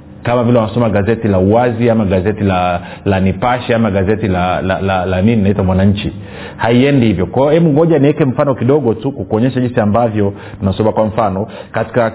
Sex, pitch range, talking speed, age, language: male, 105-130 Hz, 195 wpm, 40-59, Swahili